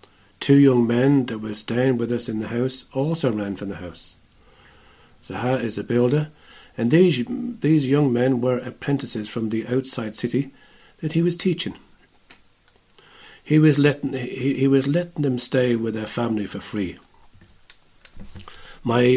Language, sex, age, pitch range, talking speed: English, male, 50-69, 110-130 Hz, 155 wpm